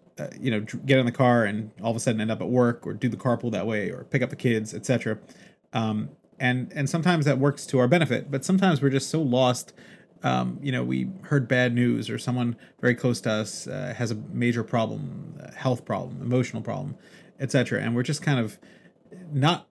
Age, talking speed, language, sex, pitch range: 30-49, 225 wpm, English, male, 115-135 Hz